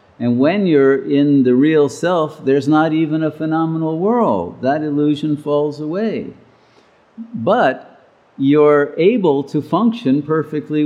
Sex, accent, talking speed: male, American, 125 wpm